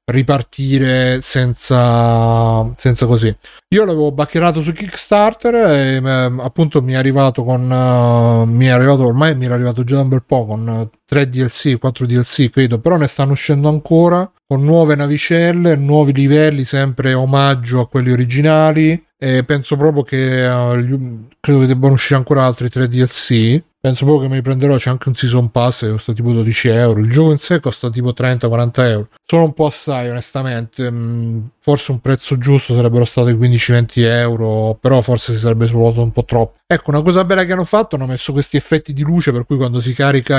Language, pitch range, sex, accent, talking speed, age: Italian, 120-145 Hz, male, native, 185 wpm, 30-49